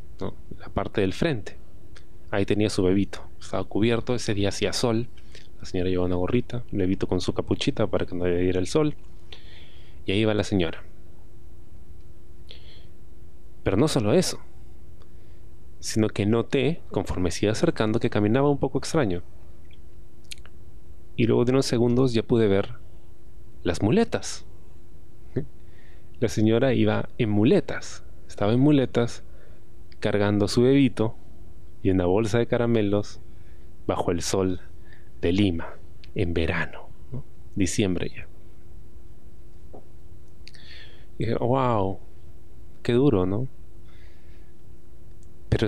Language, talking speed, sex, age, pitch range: Spanish, 130 wpm, male, 30-49, 85-115 Hz